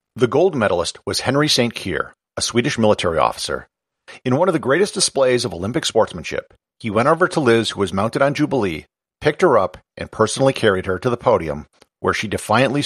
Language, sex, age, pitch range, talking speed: English, male, 50-69, 100-140 Hz, 200 wpm